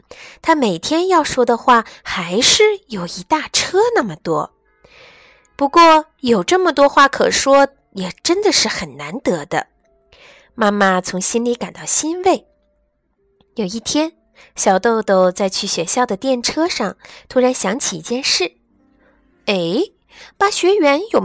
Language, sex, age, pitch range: Chinese, female, 20-39, 205-315 Hz